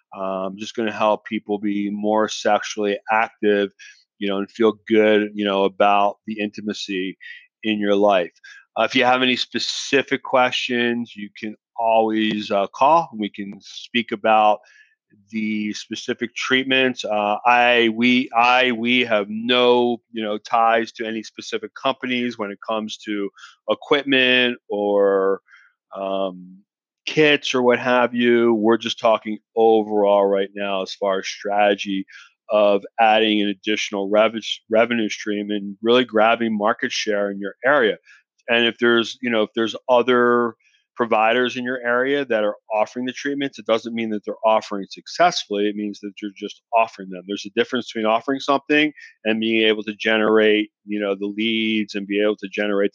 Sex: male